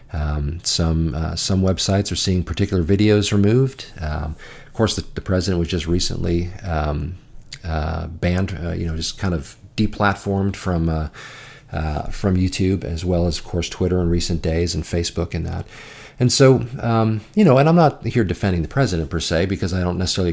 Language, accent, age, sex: English, American, 40-59, male